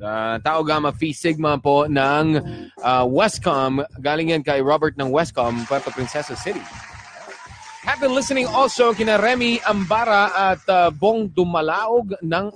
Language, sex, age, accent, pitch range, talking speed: Filipino, male, 20-39, native, 165-225 Hz, 135 wpm